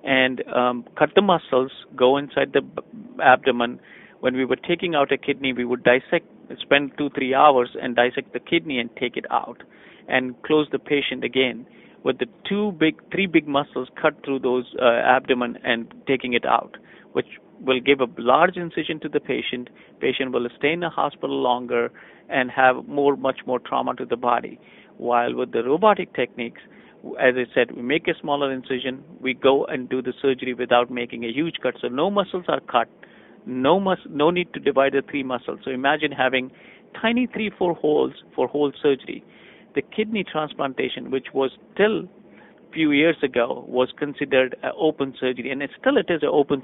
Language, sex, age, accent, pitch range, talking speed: English, male, 50-69, Indian, 125-155 Hz, 190 wpm